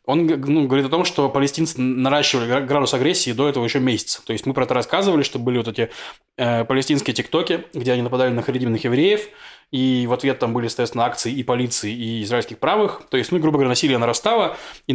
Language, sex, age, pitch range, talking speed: Russian, male, 20-39, 125-150 Hz, 210 wpm